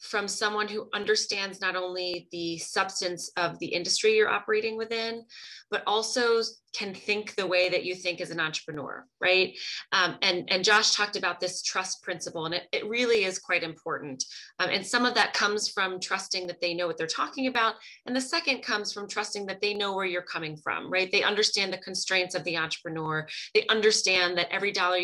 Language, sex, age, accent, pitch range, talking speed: English, female, 20-39, American, 180-225 Hz, 200 wpm